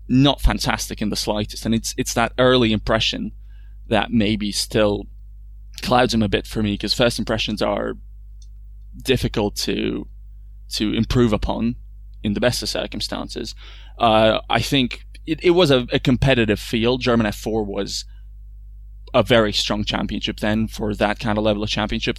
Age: 20-39